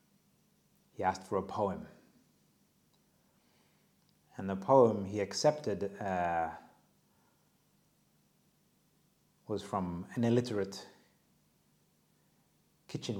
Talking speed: 75 wpm